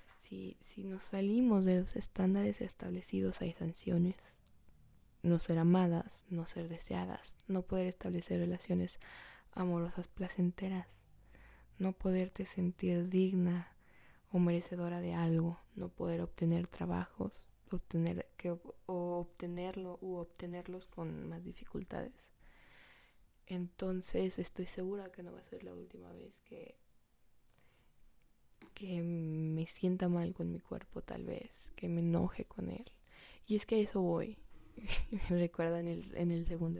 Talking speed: 135 wpm